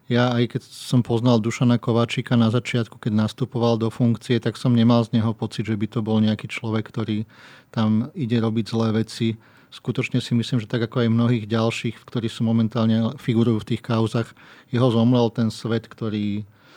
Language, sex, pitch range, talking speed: Slovak, male, 110-120 Hz, 185 wpm